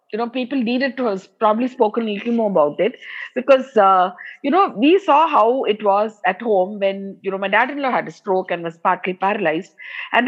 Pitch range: 205-270 Hz